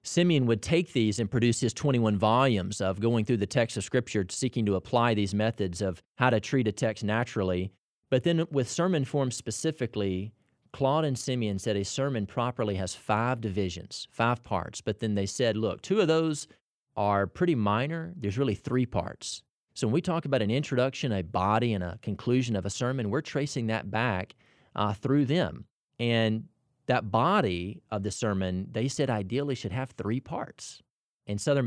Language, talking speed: English, 185 wpm